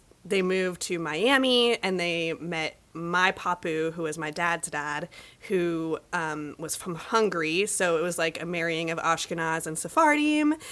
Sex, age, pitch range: female, 20-39, 160-190 Hz